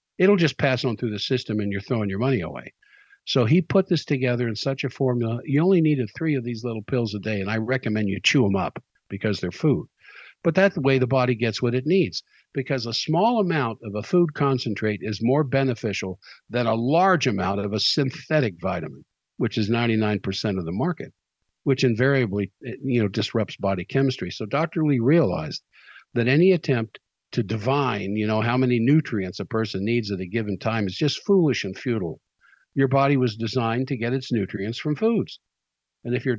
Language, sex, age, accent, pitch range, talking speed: English, male, 50-69, American, 105-140 Hz, 205 wpm